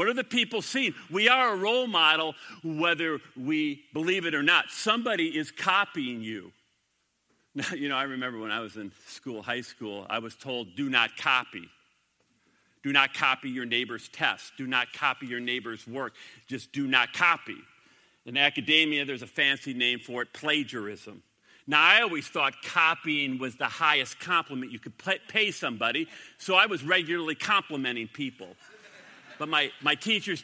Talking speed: 170 wpm